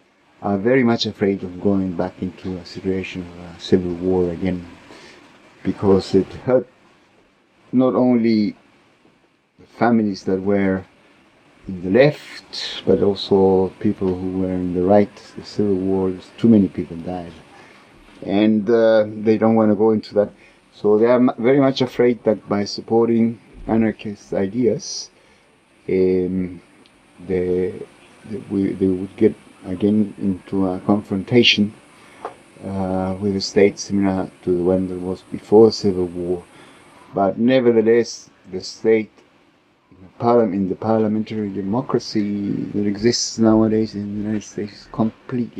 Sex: male